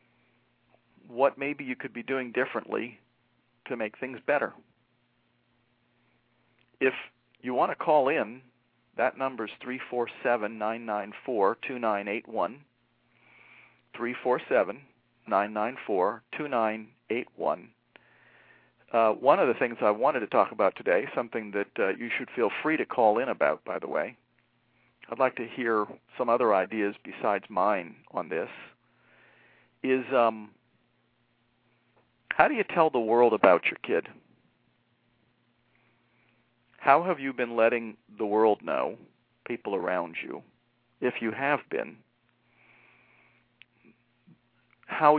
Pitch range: 110-125 Hz